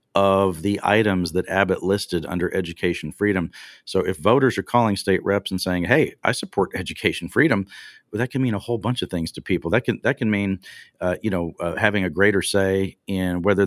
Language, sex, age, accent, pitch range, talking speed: English, male, 40-59, American, 90-115 Hz, 215 wpm